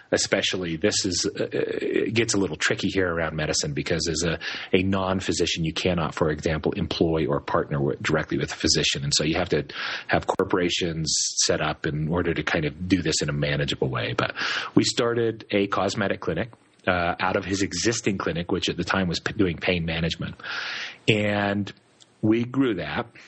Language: English